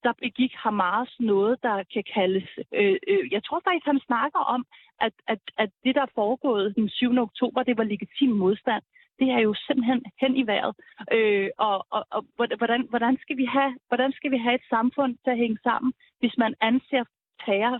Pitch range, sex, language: 215-265 Hz, female, Danish